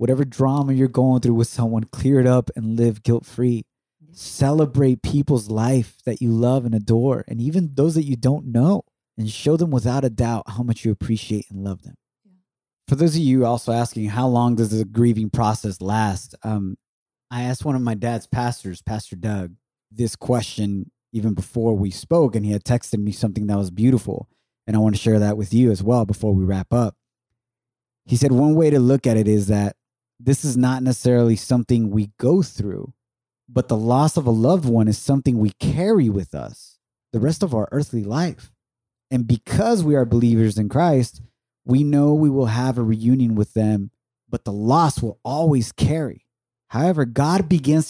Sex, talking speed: male, 195 wpm